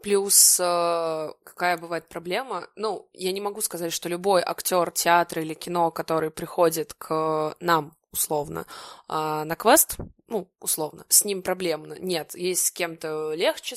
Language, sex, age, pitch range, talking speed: Russian, female, 20-39, 165-195 Hz, 145 wpm